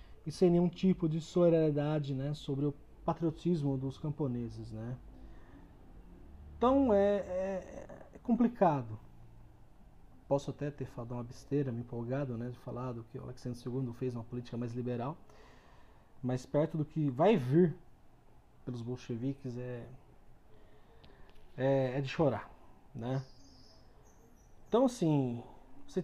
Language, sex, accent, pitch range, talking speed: Portuguese, male, Brazilian, 120-150 Hz, 130 wpm